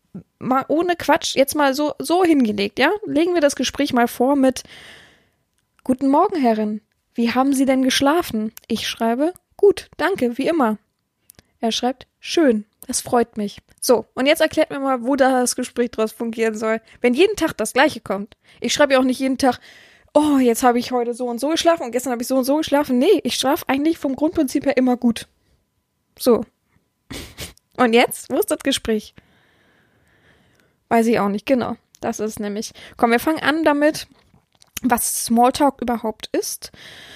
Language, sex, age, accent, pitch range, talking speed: German, female, 20-39, German, 235-285 Hz, 180 wpm